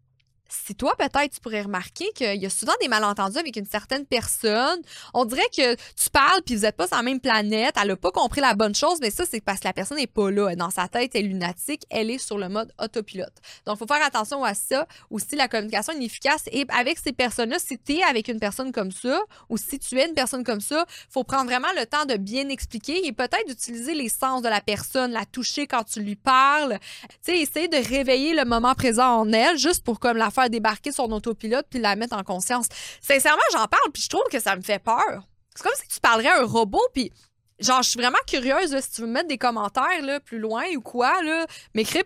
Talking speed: 250 wpm